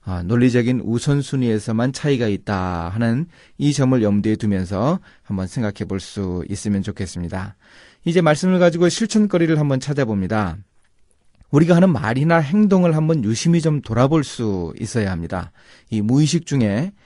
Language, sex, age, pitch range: Korean, male, 30-49, 100-140 Hz